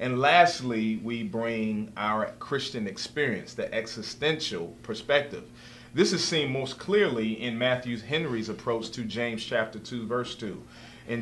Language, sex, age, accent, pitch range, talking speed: English, male, 40-59, American, 115-150 Hz, 140 wpm